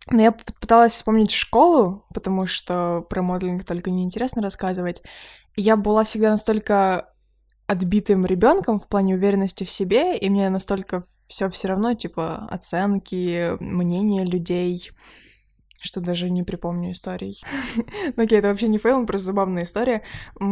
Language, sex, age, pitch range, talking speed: Ukrainian, female, 20-39, 185-220 Hz, 135 wpm